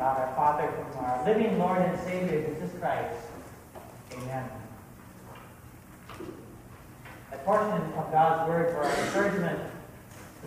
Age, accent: 40-59, American